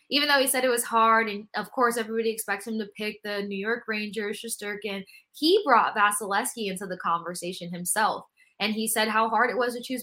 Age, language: 20-39, English